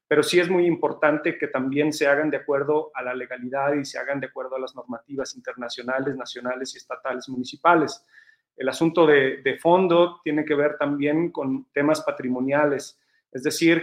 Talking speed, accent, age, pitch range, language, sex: 180 wpm, Mexican, 40-59, 135-155 Hz, Spanish, male